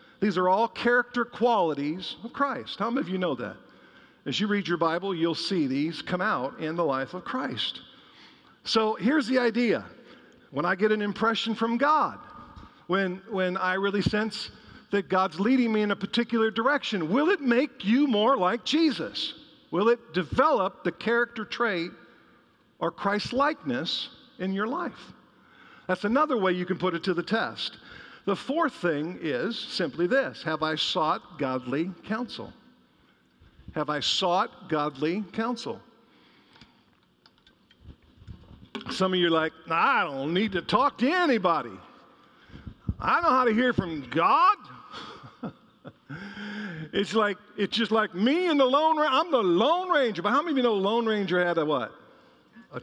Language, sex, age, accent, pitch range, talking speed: English, male, 50-69, American, 180-245 Hz, 160 wpm